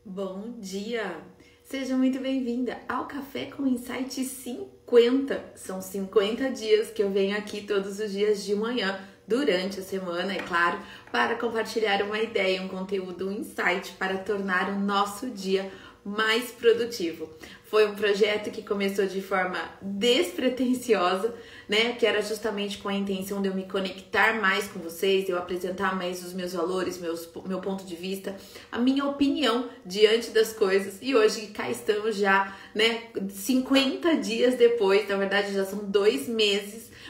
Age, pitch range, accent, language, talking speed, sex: 30-49, 190-225 Hz, Brazilian, Portuguese, 155 wpm, female